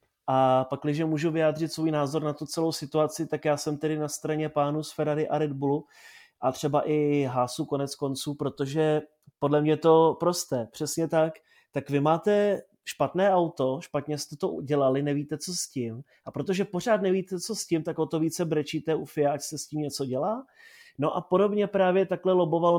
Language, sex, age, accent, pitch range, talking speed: Czech, male, 30-49, native, 145-165 Hz, 195 wpm